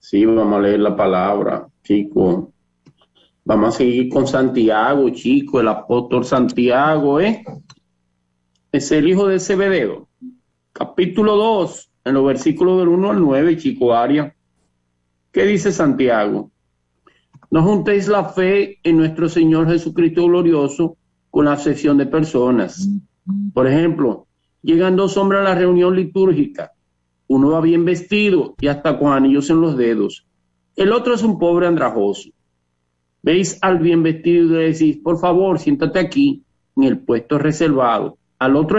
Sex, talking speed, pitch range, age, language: male, 145 wpm, 120-180 Hz, 50-69, Spanish